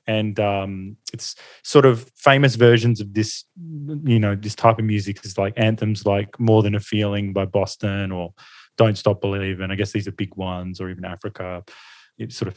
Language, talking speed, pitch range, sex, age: English, 200 wpm, 100-120 Hz, male, 20-39